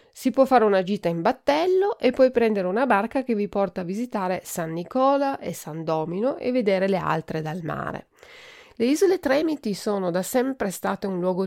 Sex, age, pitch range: female, 40-59, 180-245 Hz